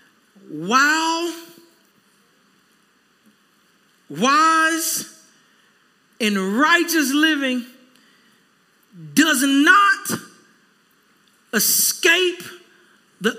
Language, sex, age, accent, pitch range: English, male, 40-59, American, 180-230 Hz